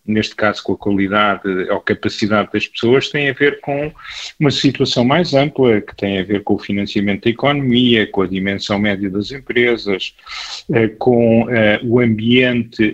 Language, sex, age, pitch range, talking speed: Portuguese, male, 40-59, 110-135 Hz, 160 wpm